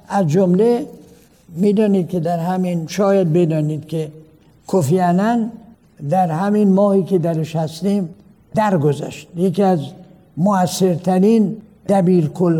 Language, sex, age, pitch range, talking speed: Persian, male, 60-79, 165-205 Hz, 100 wpm